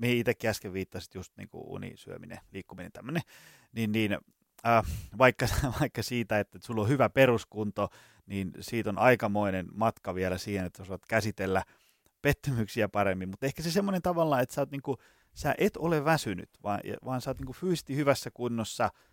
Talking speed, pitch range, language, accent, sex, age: 165 wpm, 105-135 Hz, Finnish, native, male, 30-49